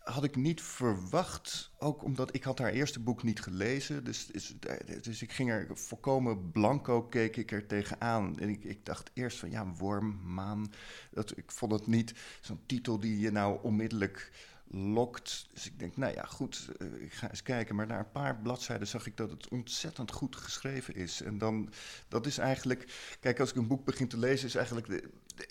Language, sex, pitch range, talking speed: Dutch, male, 105-125 Hz, 200 wpm